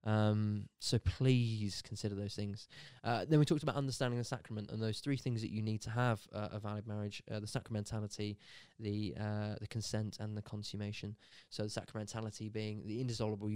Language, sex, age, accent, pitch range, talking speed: English, male, 20-39, British, 105-130 Hz, 190 wpm